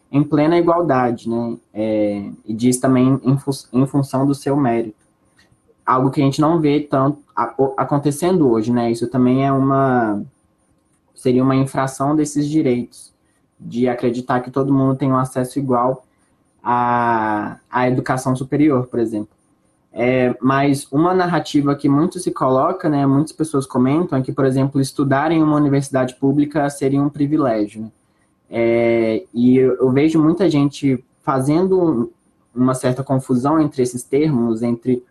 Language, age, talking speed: Portuguese, 20-39, 155 wpm